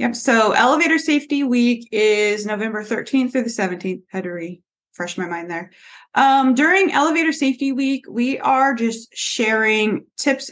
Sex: female